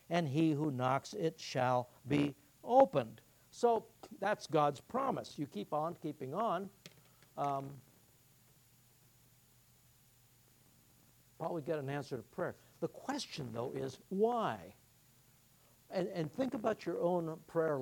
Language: English